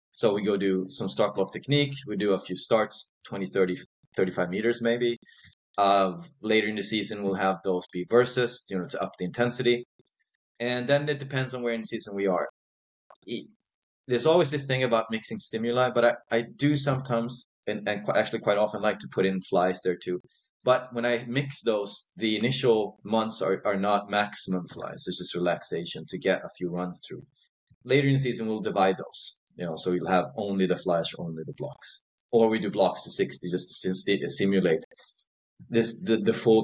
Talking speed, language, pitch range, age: 200 wpm, English, 90-120 Hz, 30-49